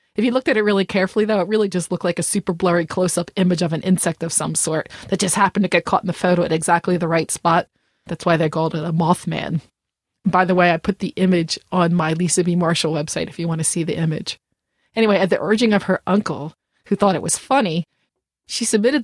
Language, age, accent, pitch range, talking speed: English, 30-49, American, 170-205 Hz, 250 wpm